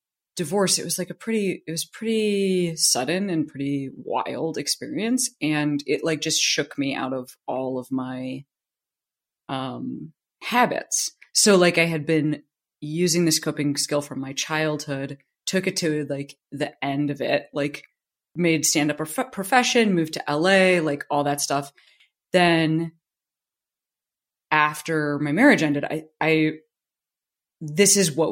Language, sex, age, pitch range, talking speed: English, female, 20-39, 145-180 Hz, 150 wpm